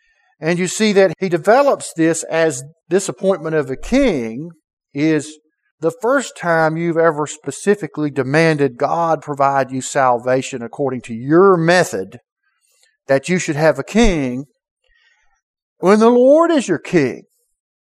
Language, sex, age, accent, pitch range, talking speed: English, male, 50-69, American, 135-200 Hz, 135 wpm